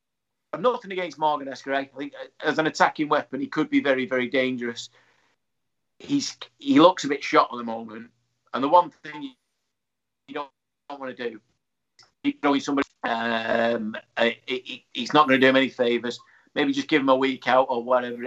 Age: 40-59